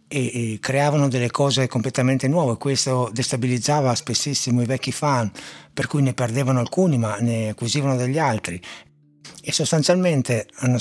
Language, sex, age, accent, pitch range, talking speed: Italian, male, 60-79, native, 110-145 Hz, 140 wpm